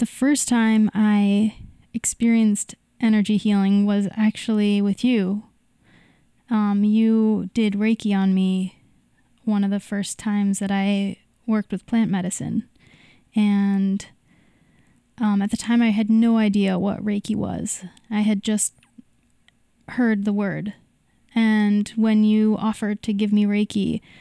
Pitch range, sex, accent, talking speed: 200-220 Hz, female, American, 135 wpm